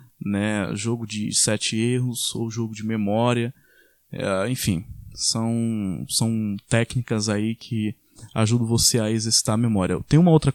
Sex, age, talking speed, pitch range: male, 20-39, 130 wpm, 115-140 Hz